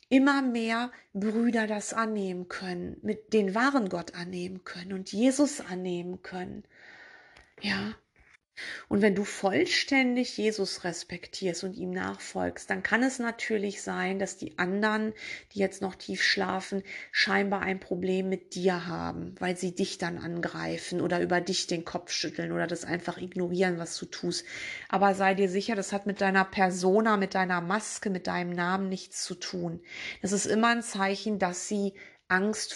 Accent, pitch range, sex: German, 180-210 Hz, female